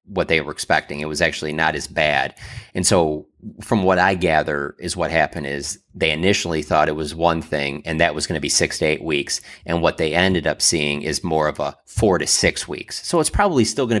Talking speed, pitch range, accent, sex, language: 240 wpm, 80-110 Hz, American, male, English